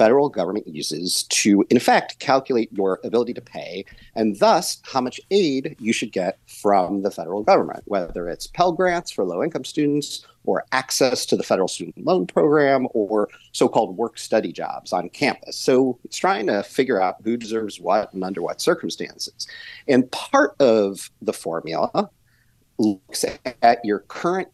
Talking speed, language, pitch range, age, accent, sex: 160 wpm, English, 105-145 Hz, 40-59, American, male